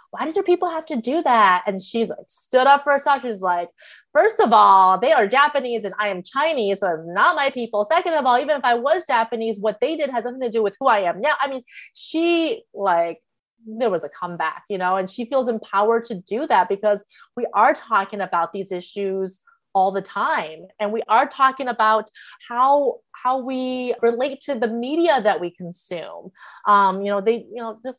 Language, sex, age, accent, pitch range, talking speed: English, female, 30-49, American, 200-260 Hz, 215 wpm